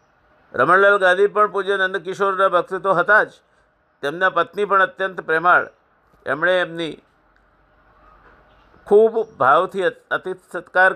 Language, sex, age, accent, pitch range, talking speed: Gujarati, male, 50-69, native, 165-205 Hz, 105 wpm